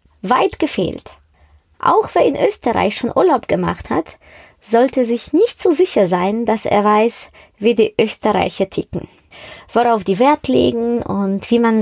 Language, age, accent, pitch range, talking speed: German, 20-39, German, 190-245 Hz, 150 wpm